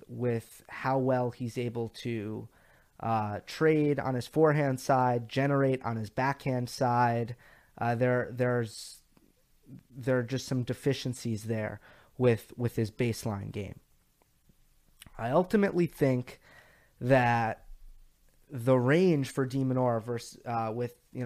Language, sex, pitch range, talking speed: English, male, 115-145 Hz, 120 wpm